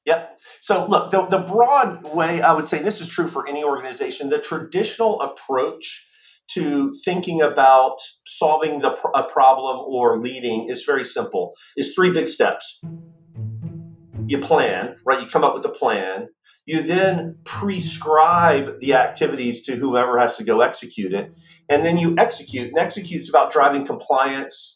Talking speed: 160 wpm